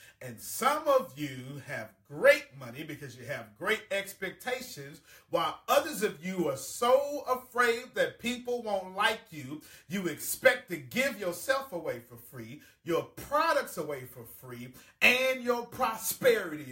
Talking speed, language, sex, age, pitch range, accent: 145 wpm, English, male, 40-59, 100-155 Hz, American